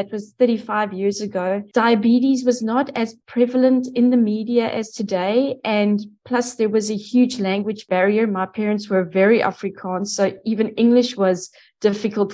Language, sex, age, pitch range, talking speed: English, female, 20-39, 195-230 Hz, 160 wpm